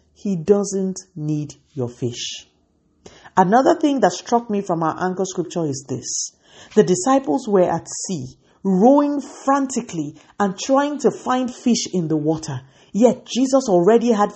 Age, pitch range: 50-69, 150-210 Hz